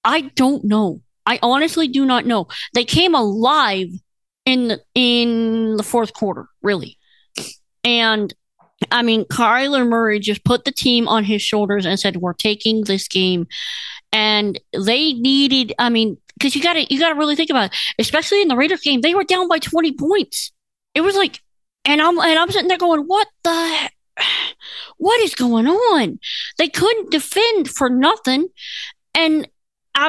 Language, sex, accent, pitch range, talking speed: English, female, American, 230-325 Hz, 175 wpm